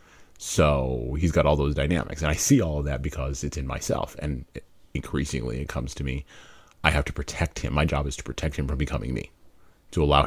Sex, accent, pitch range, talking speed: male, American, 70-80 Hz, 220 wpm